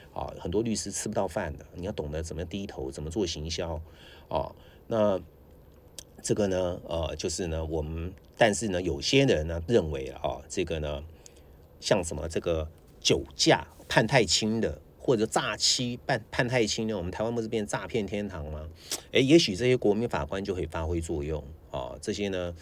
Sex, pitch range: male, 75-105 Hz